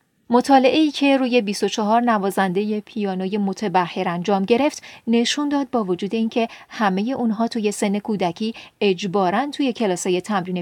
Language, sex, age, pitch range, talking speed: Persian, female, 40-59, 190-255 Hz, 135 wpm